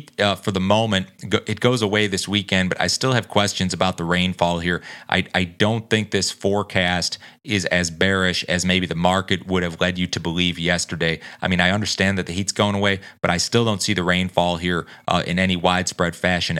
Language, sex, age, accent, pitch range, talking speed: English, male, 30-49, American, 90-105 Hz, 215 wpm